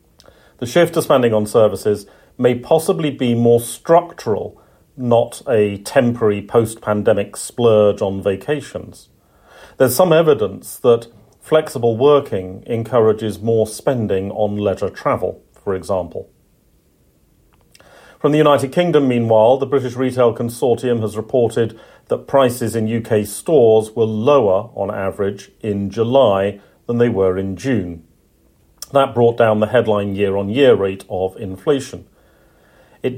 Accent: British